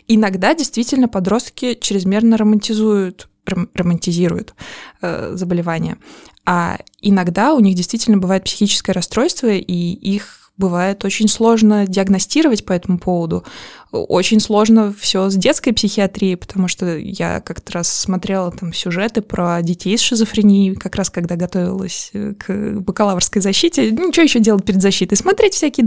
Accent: native